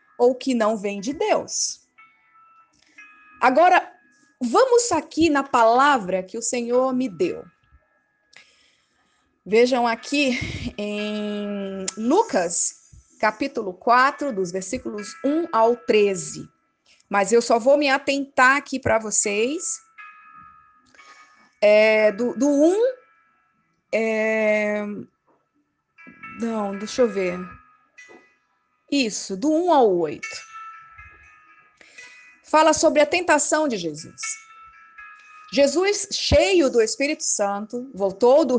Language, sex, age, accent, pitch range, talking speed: Portuguese, female, 20-39, Brazilian, 220-325 Hz, 100 wpm